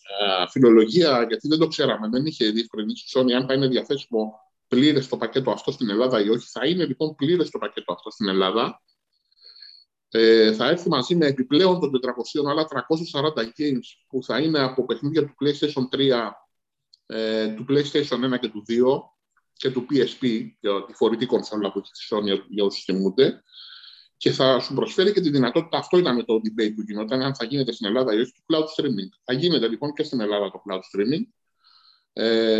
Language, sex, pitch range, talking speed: Greek, male, 115-155 Hz, 185 wpm